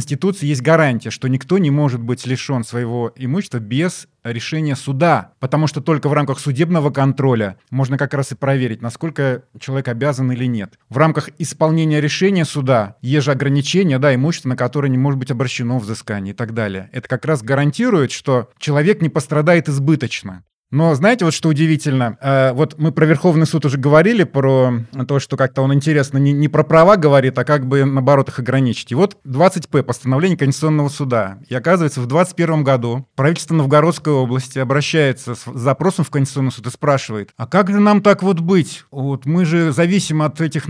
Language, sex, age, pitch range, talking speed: Russian, male, 20-39, 130-160 Hz, 185 wpm